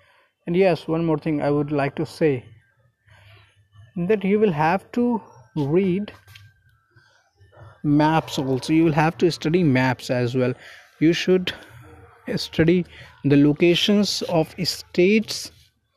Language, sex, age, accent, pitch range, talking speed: Hindi, male, 20-39, native, 125-175 Hz, 125 wpm